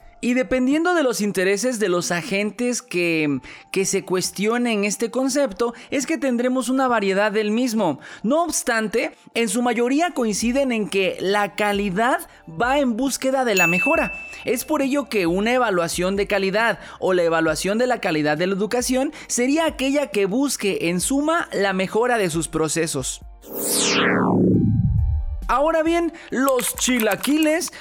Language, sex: Spanish, male